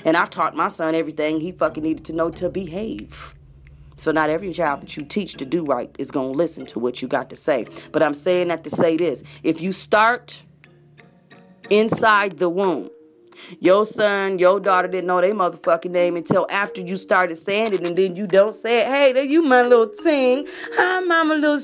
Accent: American